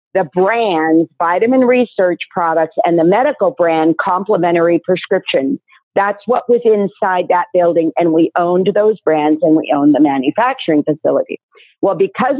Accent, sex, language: American, female, English